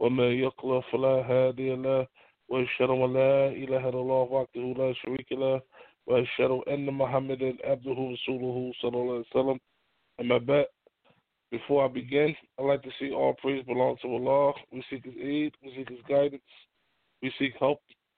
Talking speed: 85 wpm